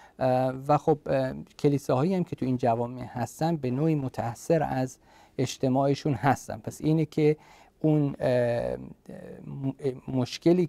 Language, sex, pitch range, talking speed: Persian, male, 120-145 Hz, 135 wpm